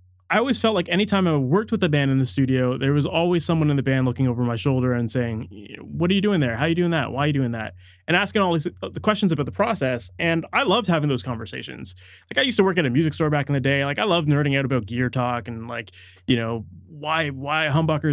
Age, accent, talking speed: 20-39, American, 275 wpm